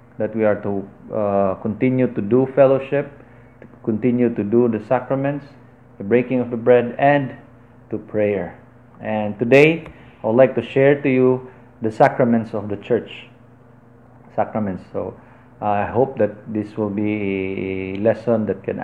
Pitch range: 110-130 Hz